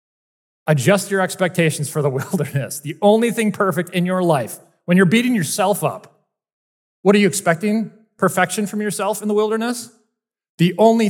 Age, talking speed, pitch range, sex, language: 30-49, 160 wpm, 135-190 Hz, male, English